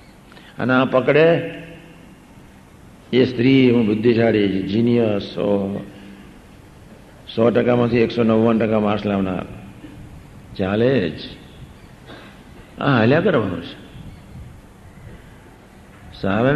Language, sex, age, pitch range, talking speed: Gujarati, male, 60-79, 100-145 Hz, 80 wpm